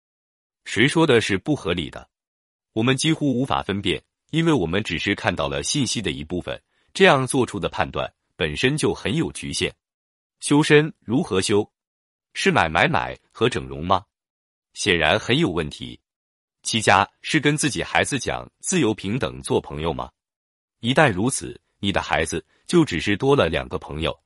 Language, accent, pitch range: Chinese, native, 85-135 Hz